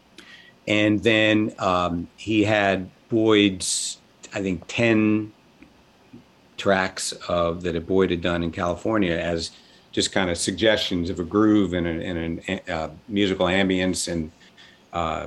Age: 60-79